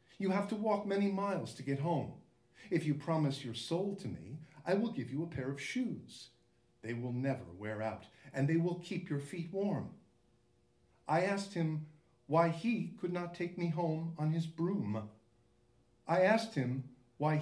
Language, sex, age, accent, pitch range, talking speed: English, male, 50-69, American, 125-185 Hz, 185 wpm